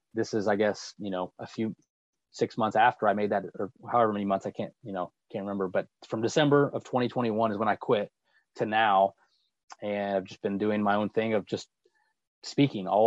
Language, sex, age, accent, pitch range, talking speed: English, male, 20-39, American, 100-125 Hz, 215 wpm